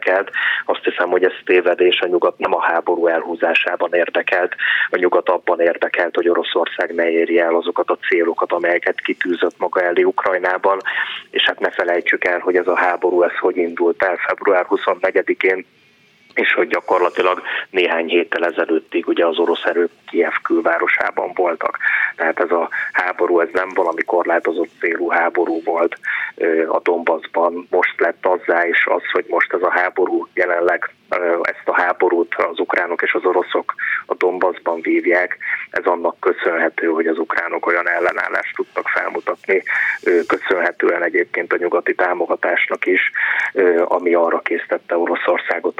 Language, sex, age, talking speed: Hungarian, male, 30-49, 145 wpm